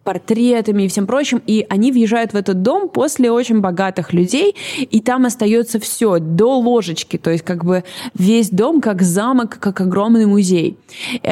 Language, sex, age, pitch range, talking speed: Russian, female, 20-39, 180-230 Hz, 170 wpm